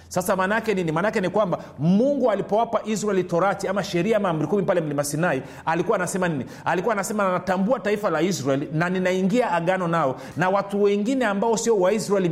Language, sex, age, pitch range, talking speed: Swahili, male, 40-59, 175-225 Hz, 170 wpm